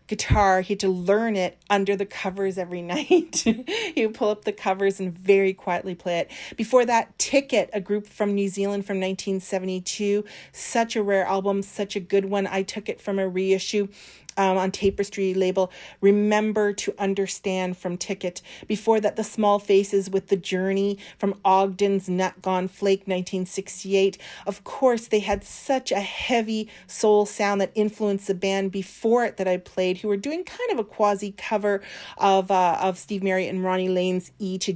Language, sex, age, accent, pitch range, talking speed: English, female, 40-59, American, 190-210 Hz, 185 wpm